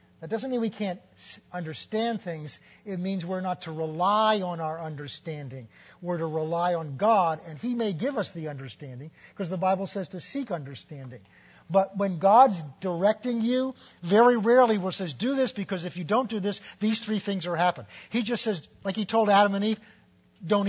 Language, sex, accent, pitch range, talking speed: English, male, American, 155-210 Hz, 195 wpm